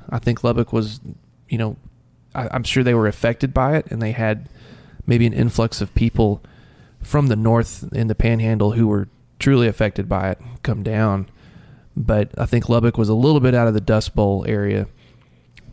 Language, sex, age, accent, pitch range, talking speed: English, male, 20-39, American, 100-120 Hz, 190 wpm